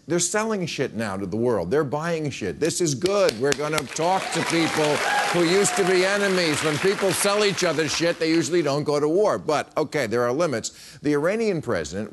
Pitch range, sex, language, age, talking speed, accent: 120-175 Hz, male, English, 50-69, 215 wpm, American